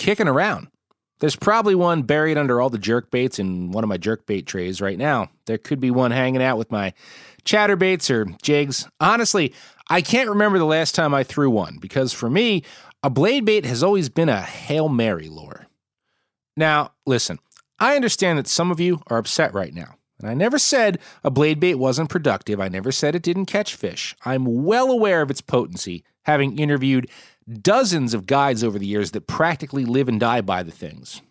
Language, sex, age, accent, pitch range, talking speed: English, male, 30-49, American, 115-175 Hz, 200 wpm